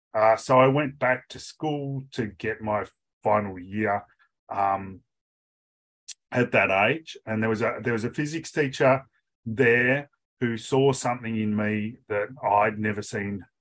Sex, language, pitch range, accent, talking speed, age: male, English, 100-125 Hz, Australian, 145 wpm, 30-49